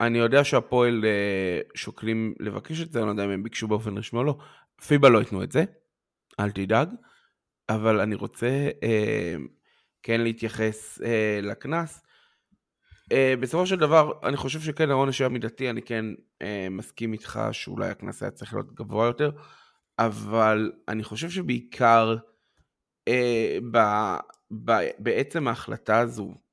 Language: Hebrew